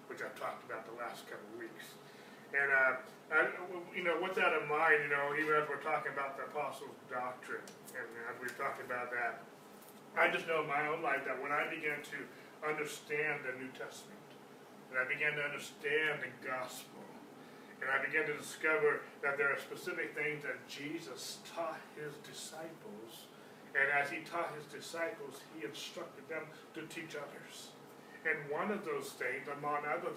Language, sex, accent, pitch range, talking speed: English, male, American, 145-175 Hz, 185 wpm